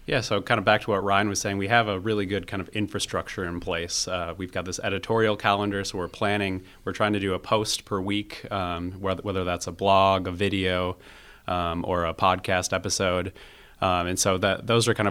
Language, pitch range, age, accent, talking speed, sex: English, 90-100 Hz, 30-49, American, 225 wpm, male